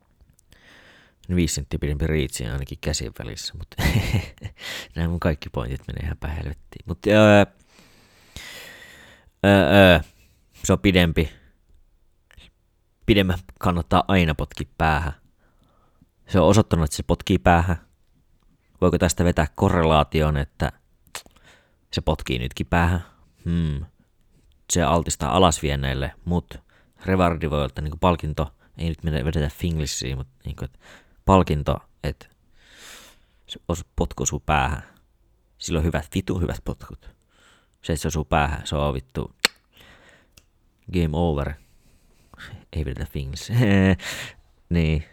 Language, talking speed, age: Finnish, 105 wpm, 30-49